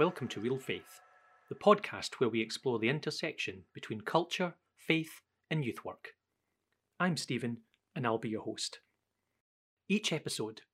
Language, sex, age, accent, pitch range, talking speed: English, male, 30-49, British, 120-160 Hz, 145 wpm